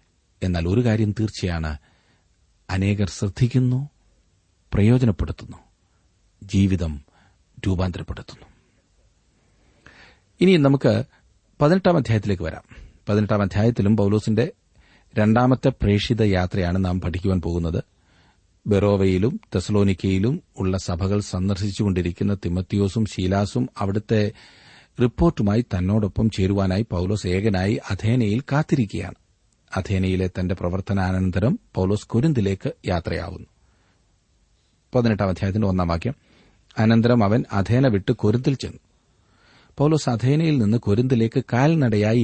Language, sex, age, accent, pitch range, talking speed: Malayalam, male, 40-59, native, 95-115 Hz, 55 wpm